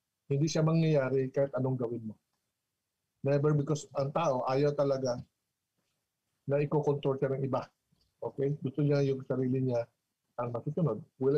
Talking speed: 140 wpm